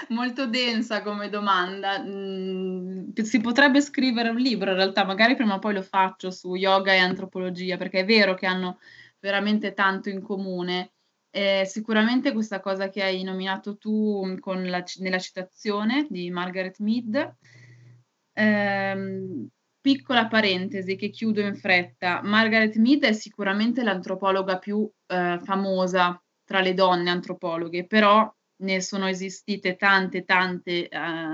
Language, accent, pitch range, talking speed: Italian, native, 180-205 Hz, 130 wpm